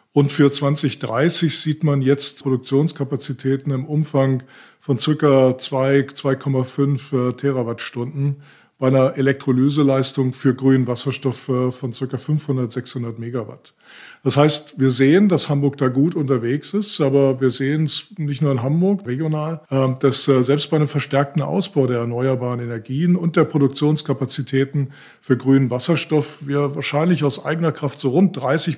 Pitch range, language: 130-150 Hz, German